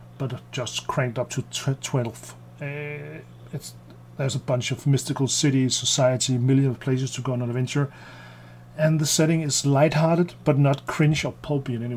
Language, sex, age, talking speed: Danish, male, 40-59, 180 wpm